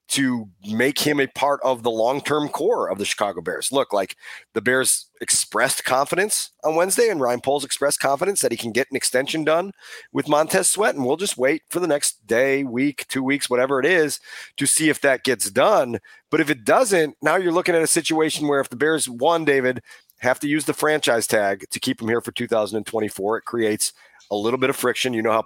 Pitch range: 125-175 Hz